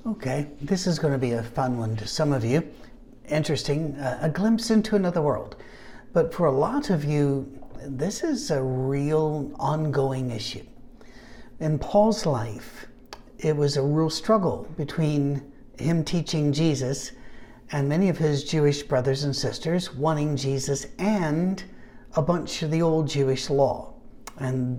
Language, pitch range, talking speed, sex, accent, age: English, 135-165 Hz, 155 wpm, male, American, 60-79